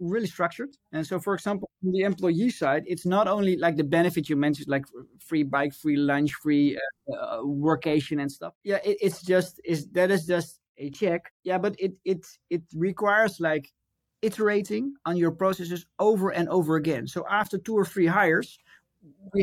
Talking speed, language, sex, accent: 185 wpm, English, male, Dutch